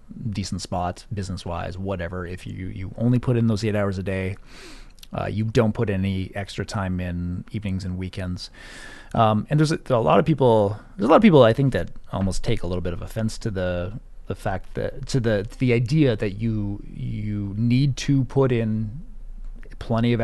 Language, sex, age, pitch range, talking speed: English, male, 30-49, 95-120 Hz, 200 wpm